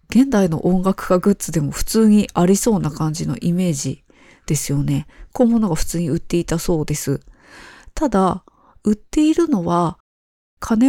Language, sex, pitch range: Japanese, female, 155-230 Hz